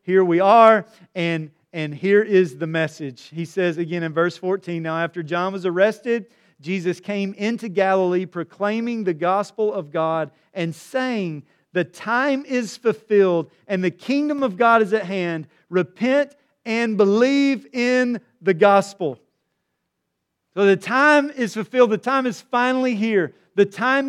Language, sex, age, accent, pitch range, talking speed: English, male, 40-59, American, 185-235 Hz, 150 wpm